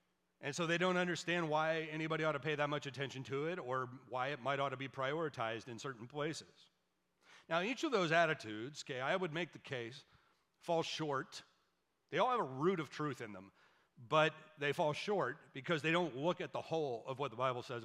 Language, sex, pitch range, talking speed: English, male, 130-165 Hz, 215 wpm